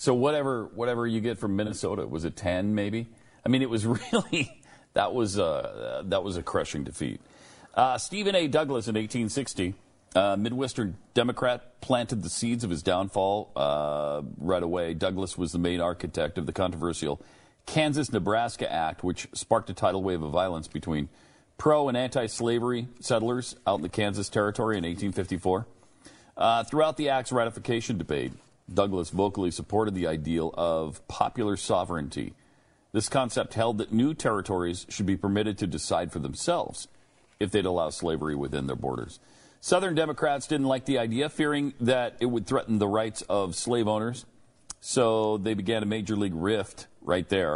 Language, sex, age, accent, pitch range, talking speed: English, male, 40-59, American, 95-130 Hz, 165 wpm